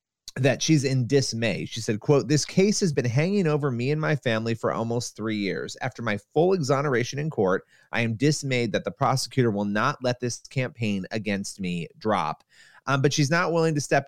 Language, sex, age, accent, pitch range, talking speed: English, male, 30-49, American, 110-145 Hz, 205 wpm